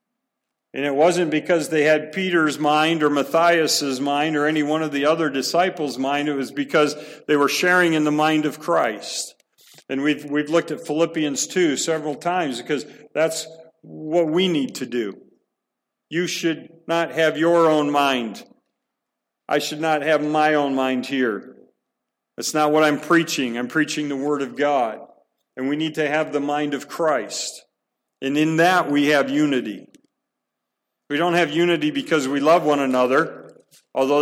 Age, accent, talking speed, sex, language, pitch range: 50-69, American, 170 wpm, male, English, 145-160 Hz